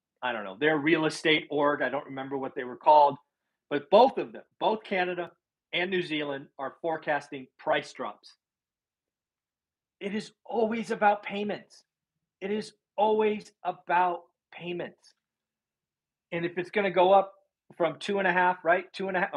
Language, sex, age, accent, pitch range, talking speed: English, male, 40-59, American, 145-185 Hz, 165 wpm